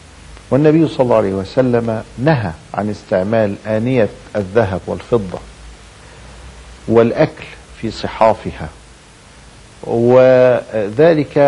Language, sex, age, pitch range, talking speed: Arabic, male, 50-69, 100-130 Hz, 80 wpm